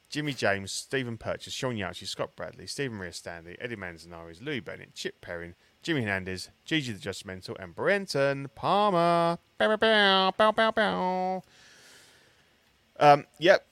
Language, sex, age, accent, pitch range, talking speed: English, male, 30-49, British, 90-130 Hz, 125 wpm